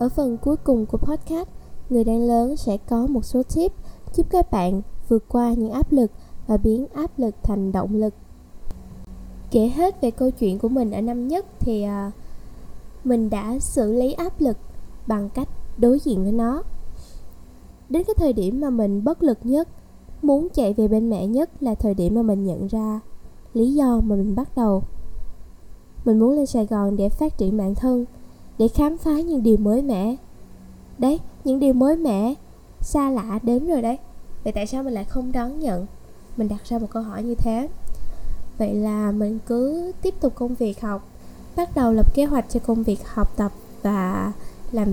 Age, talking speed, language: 10-29, 190 wpm, Vietnamese